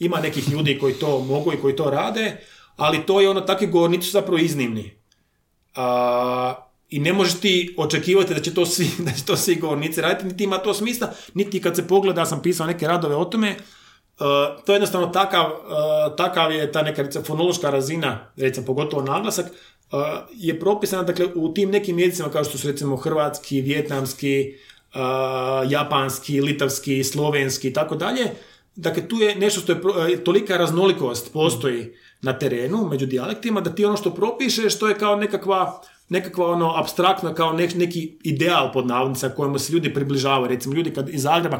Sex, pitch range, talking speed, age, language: male, 140-185 Hz, 165 wpm, 30-49, Croatian